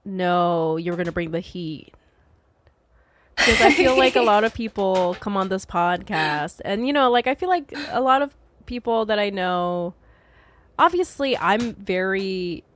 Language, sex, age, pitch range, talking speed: English, female, 20-39, 175-225 Hz, 165 wpm